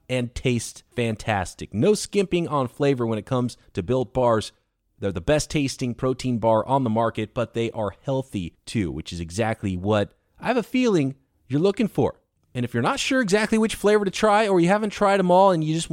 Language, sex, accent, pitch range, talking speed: English, male, American, 110-170 Hz, 215 wpm